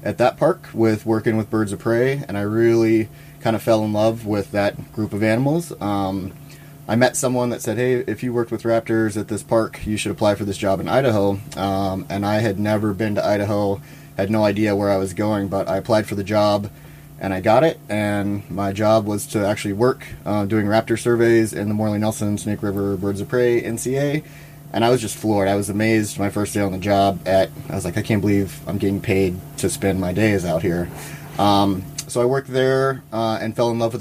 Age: 30-49